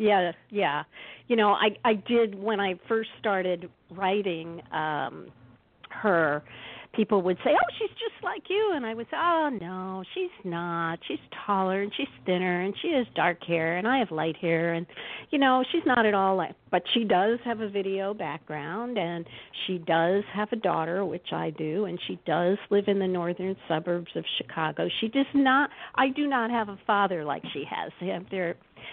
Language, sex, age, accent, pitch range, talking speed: English, female, 50-69, American, 180-240 Hz, 195 wpm